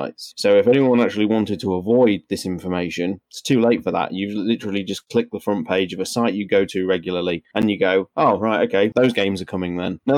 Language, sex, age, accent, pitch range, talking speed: English, male, 20-39, British, 90-110 Hz, 235 wpm